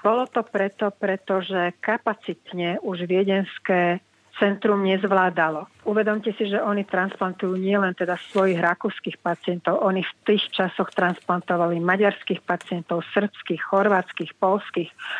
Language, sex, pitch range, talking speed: Slovak, female, 175-205 Hz, 115 wpm